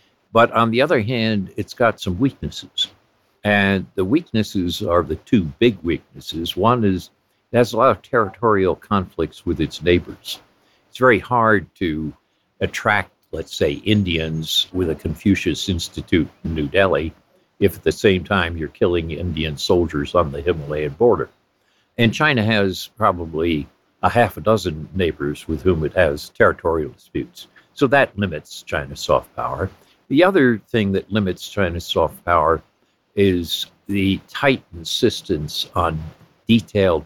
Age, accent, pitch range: 60-79, American, 85-110 Hz